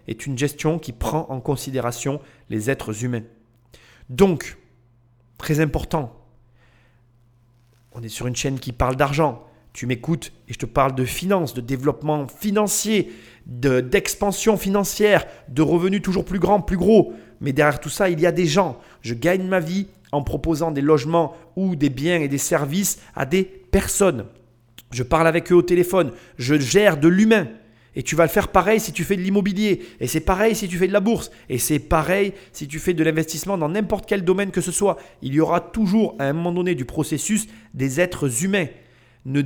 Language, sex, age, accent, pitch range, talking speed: French, male, 30-49, French, 130-185 Hz, 195 wpm